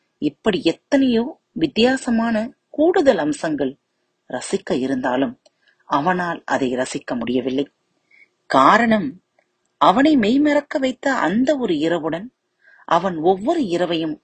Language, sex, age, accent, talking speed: Tamil, female, 30-49, native, 80 wpm